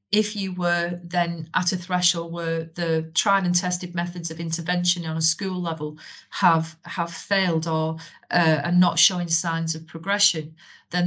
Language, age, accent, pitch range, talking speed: English, 40-59, British, 160-175 Hz, 170 wpm